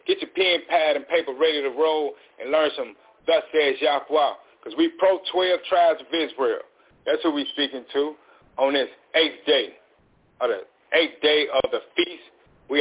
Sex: male